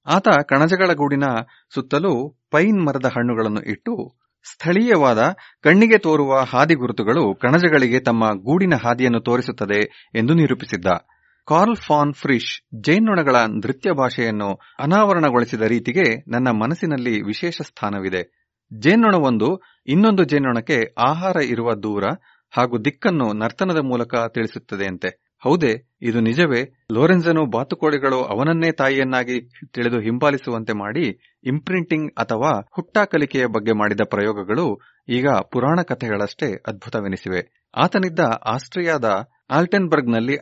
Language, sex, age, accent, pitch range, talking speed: Kannada, male, 30-49, native, 115-160 Hz, 100 wpm